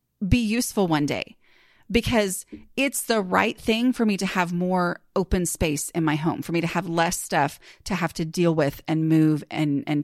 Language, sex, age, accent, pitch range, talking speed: English, female, 30-49, American, 160-215 Hz, 205 wpm